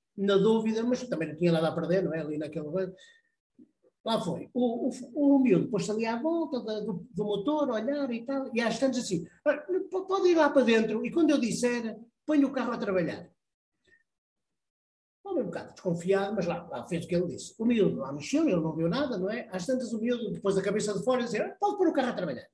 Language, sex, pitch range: Portuguese, male, 195-275 Hz